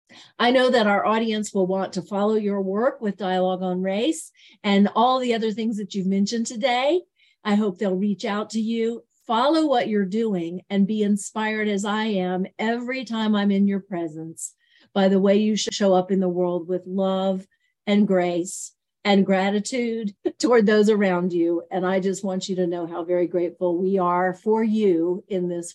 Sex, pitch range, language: female, 185-230 Hz, English